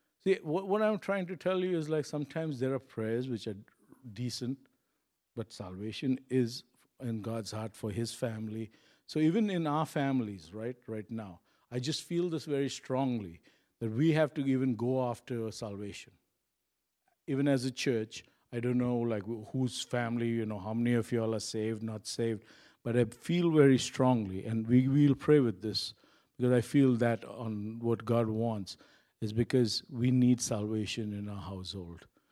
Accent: Indian